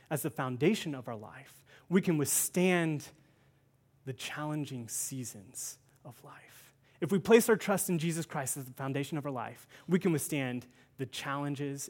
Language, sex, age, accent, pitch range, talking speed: English, male, 30-49, American, 135-180 Hz, 165 wpm